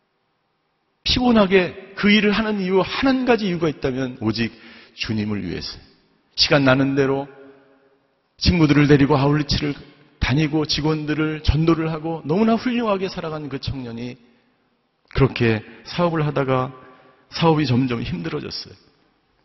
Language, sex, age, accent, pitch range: Korean, male, 40-59, native, 130-175 Hz